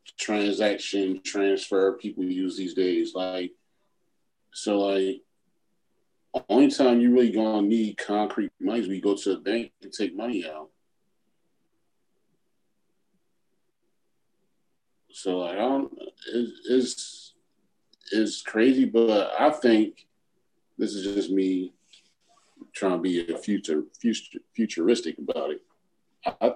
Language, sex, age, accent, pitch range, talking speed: English, male, 40-59, American, 100-150 Hz, 115 wpm